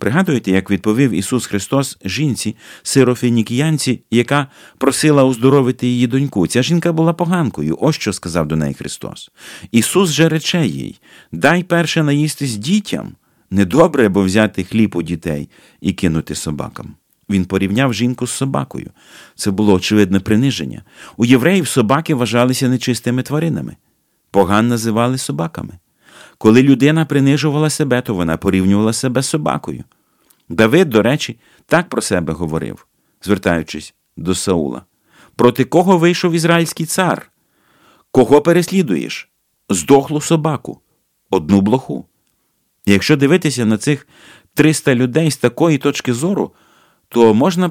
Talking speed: 125 wpm